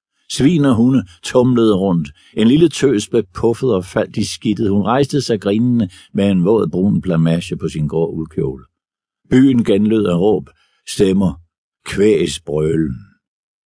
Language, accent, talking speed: Danish, native, 150 wpm